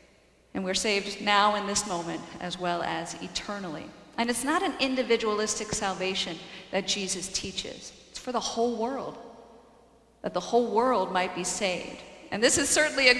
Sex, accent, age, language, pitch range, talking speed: female, American, 50-69, English, 195-255 Hz, 170 wpm